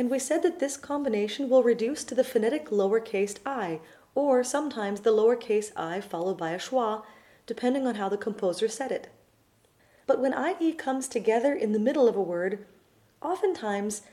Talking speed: 175 wpm